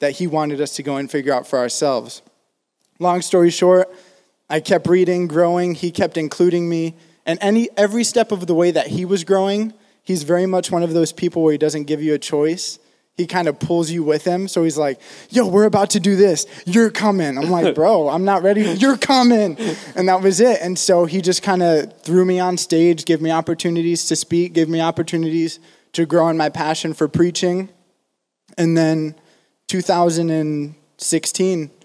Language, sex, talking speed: English, male, 200 wpm